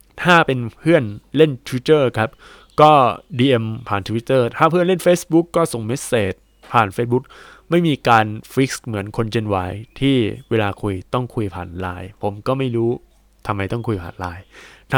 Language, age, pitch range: Thai, 20-39, 110-150 Hz